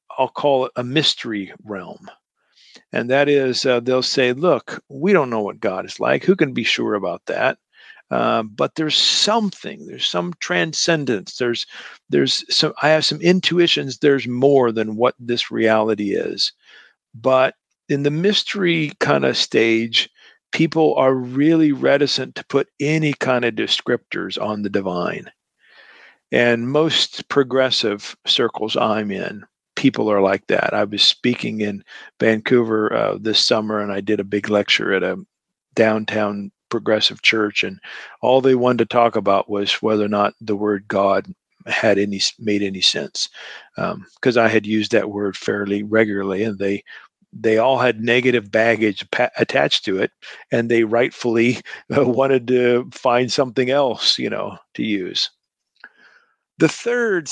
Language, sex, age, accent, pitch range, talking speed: English, male, 50-69, American, 105-135 Hz, 155 wpm